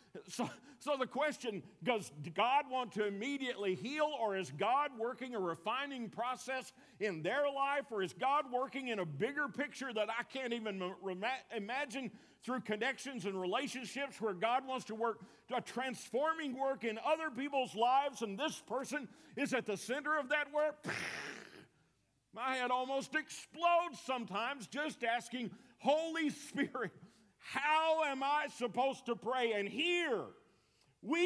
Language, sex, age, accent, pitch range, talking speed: English, male, 50-69, American, 205-275 Hz, 150 wpm